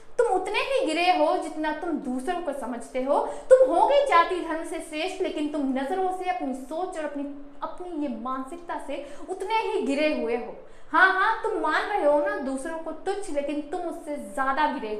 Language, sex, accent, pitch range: Hindi, female, native, 265-335 Hz